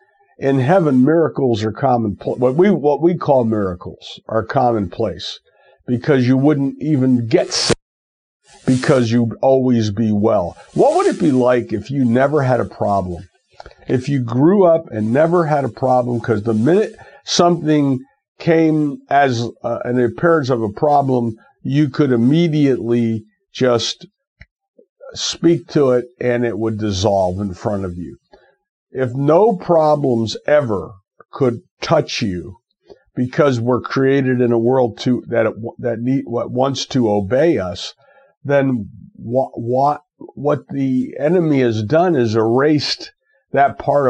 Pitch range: 115-150 Hz